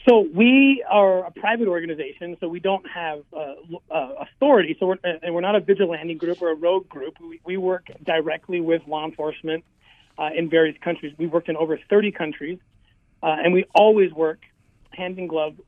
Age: 40-59